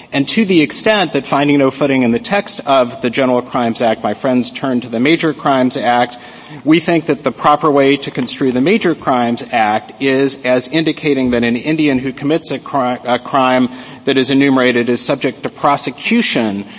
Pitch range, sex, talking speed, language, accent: 115-140 Hz, male, 190 wpm, English, American